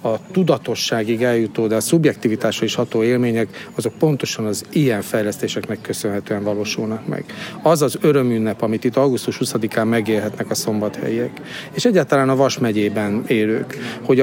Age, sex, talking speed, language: 50-69, male, 145 wpm, Hungarian